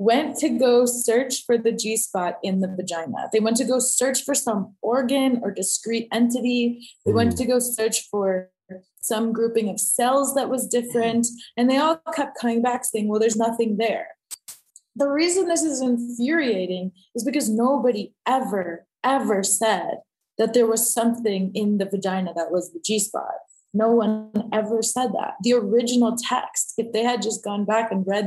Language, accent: English, Canadian